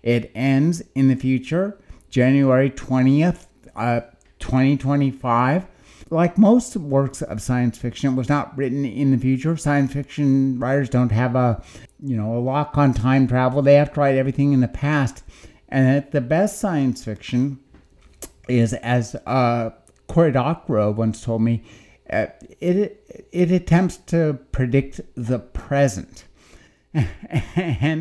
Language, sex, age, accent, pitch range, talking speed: English, male, 60-79, American, 115-145 Hz, 145 wpm